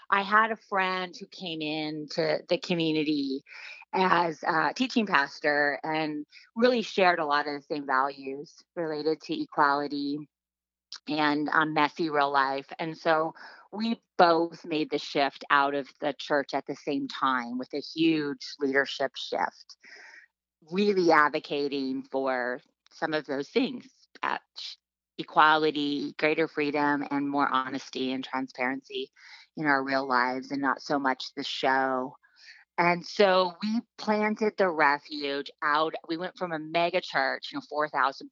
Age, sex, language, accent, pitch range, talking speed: 30-49, female, English, American, 140-175 Hz, 145 wpm